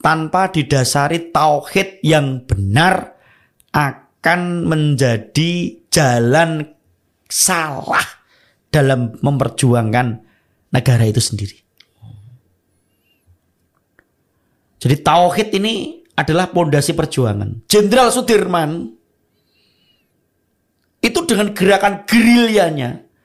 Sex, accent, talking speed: male, native, 65 wpm